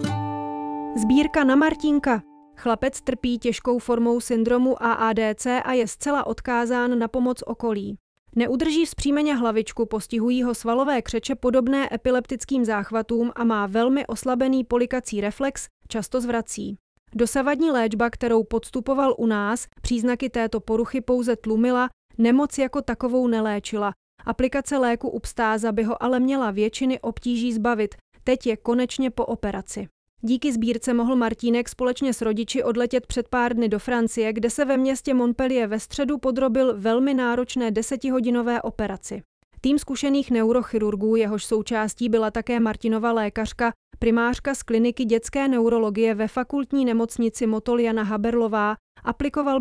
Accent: Czech